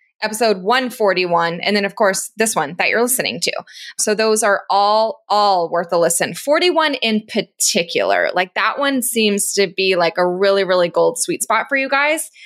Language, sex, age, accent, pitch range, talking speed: English, female, 20-39, American, 195-255 Hz, 190 wpm